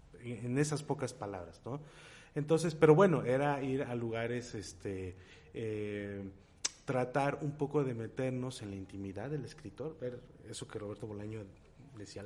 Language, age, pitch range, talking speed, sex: Spanish, 30-49, 100-130 Hz, 140 wpm, male